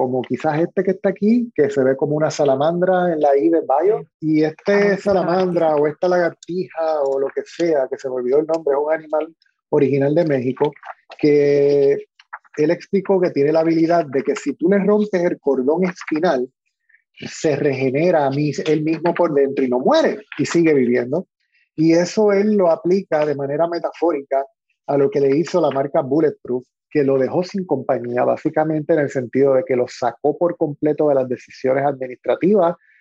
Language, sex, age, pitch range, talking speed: Spanish, male, 30-49, 135-170 Hz, 190 wpm